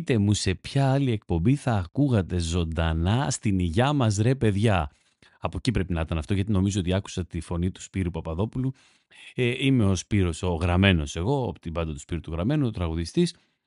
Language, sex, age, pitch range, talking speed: Greek, male, 30-49, 90-125 Hz, 200 wpm